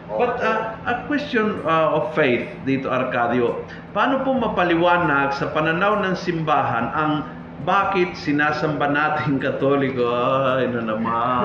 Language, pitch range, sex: Filipino, 140-190 Hz, male